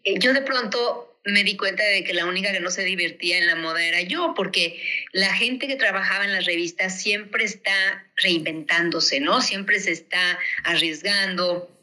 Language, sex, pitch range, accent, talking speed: Spanish, female, 180-225 Hz, Mexican, 180 wpm